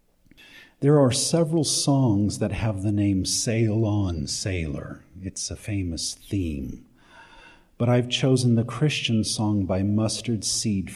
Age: 50-69